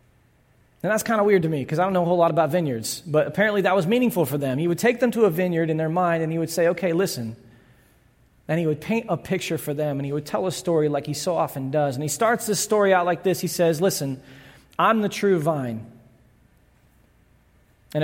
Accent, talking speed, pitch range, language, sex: American, 245 wpm, 145-215 Hz, English, male